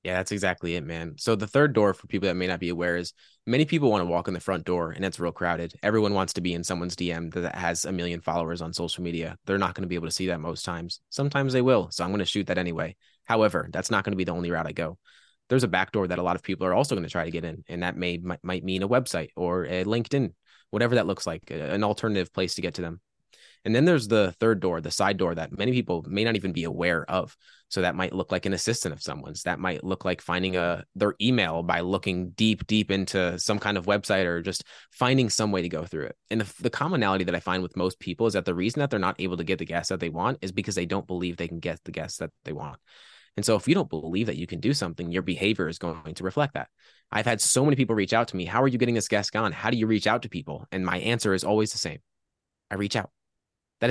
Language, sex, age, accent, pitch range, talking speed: English, male, 20-39, American, 85-105 Hz, 285 wpm